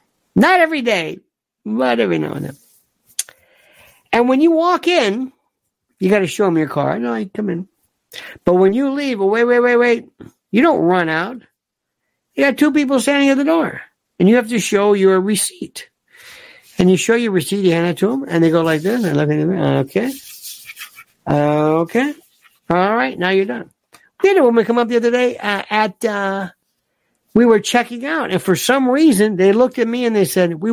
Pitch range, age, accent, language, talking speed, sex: 185-275 Hz, 60-79, American, English, 200 wpm, male